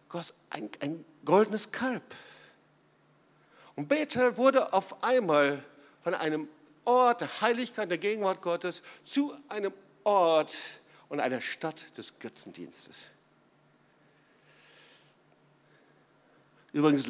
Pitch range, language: 155-210 Hz, German